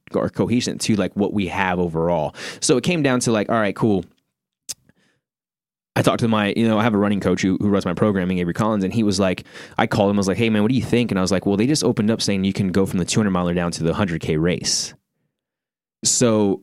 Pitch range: 95-110 Hz